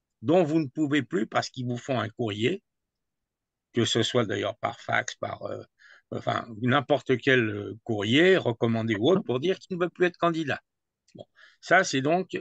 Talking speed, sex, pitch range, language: 185 wpm, male, 120-165 Hz, French